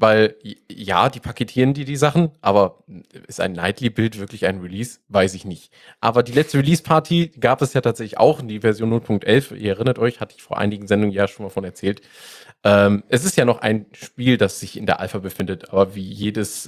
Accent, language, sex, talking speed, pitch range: German, German, male, 210 wpm, 100-130 Hz